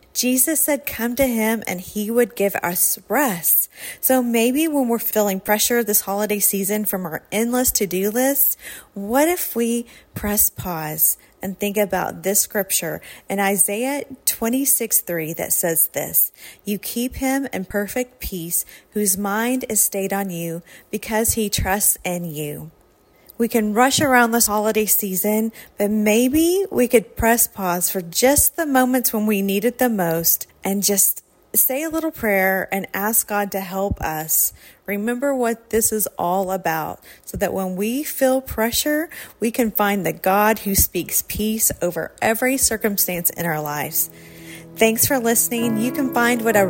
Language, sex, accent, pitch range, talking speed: English, female, American, 190-245 Hz, 165 wpm